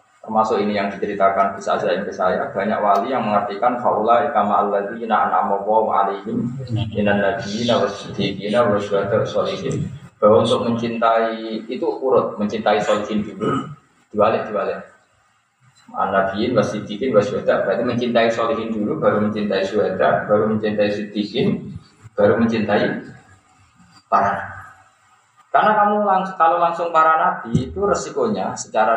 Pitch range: 105-140 Hz